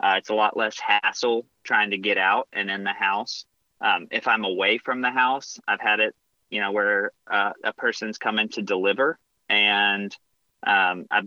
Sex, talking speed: male, 190 wpm